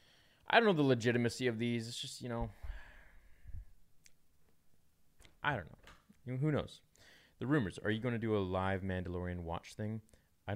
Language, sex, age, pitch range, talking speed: English, male, 20-39, 85-110 Hz, 165 wpm